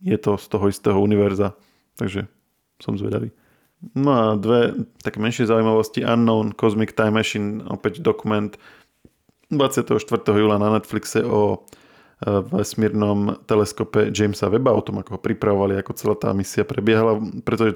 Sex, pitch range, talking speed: male, 100-110 Hz, 130 wpm